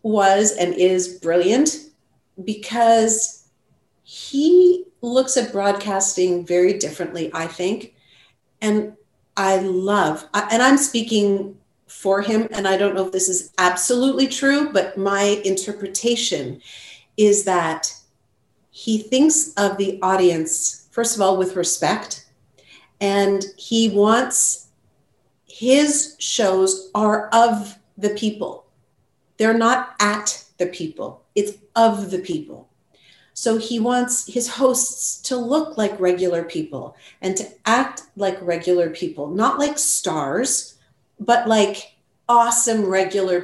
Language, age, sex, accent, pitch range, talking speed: English, 40-59, female, American, 185-235 Hz, 120 wpm